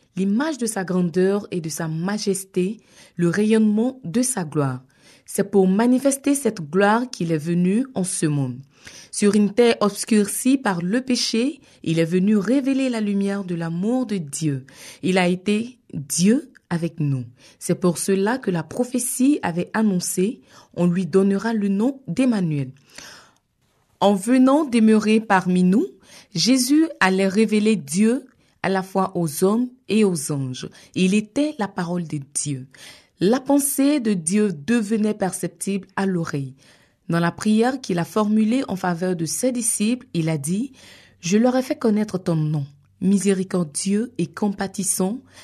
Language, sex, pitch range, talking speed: French, female, 175-230 Hz, 155 wpm